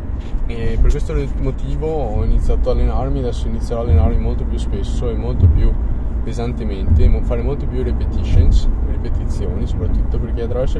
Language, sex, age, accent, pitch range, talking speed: Italian, male, 20-39, native, 70-115 Hz, 145 wpm